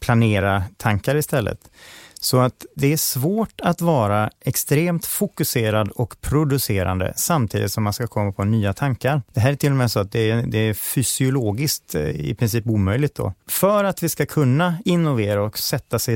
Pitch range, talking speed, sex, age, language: 110-150 Hz, 175 wpm, male, 30-49, English